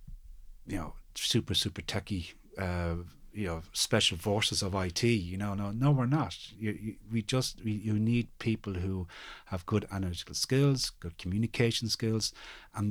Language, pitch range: English, 90-115 Hz